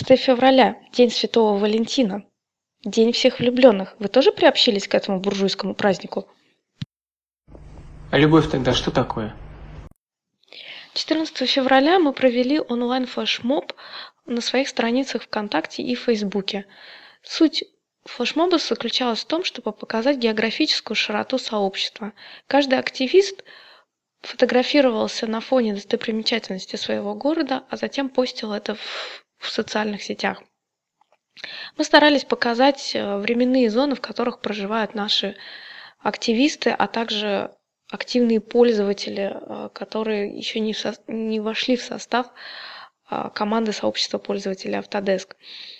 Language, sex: Russian, female